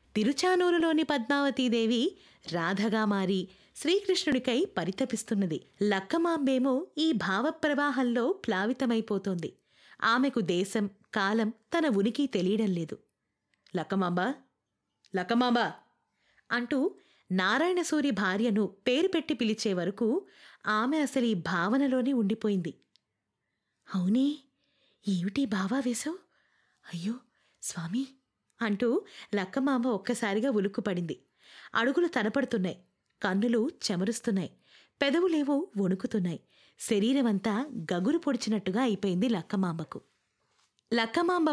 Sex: female